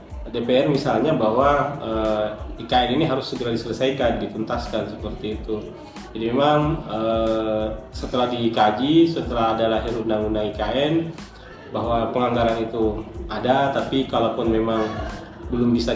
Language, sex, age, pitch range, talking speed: Indonesian, male, 20-39, 110-135 Hz, 115 wpm